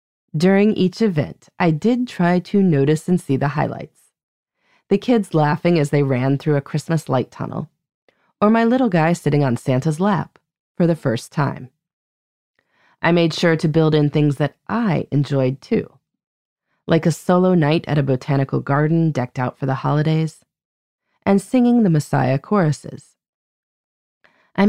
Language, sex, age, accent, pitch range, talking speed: English, female, 20-39, American, 140-190 Hz, 160 wpm